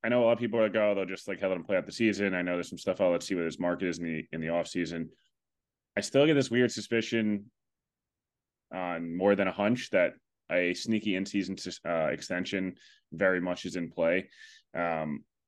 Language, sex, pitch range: English, male, 85-105 Hz